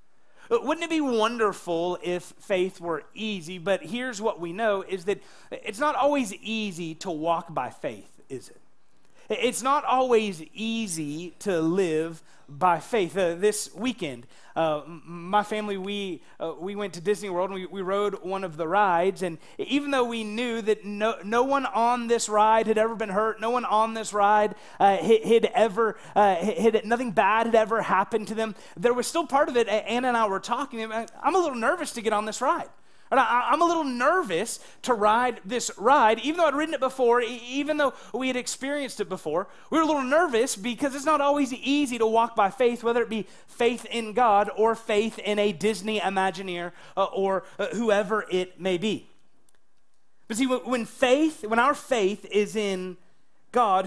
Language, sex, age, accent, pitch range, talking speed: English, male, 30-49, American, 190-245 Hz, 195 wpm